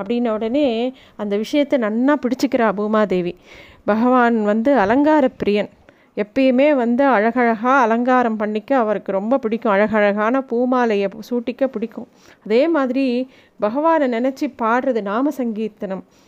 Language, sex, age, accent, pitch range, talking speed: Tamil, female, 30-49, native, 215-275 Hz, 110 wpm